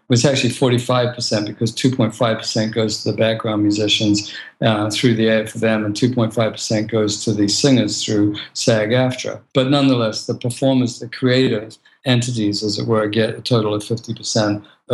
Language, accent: English, American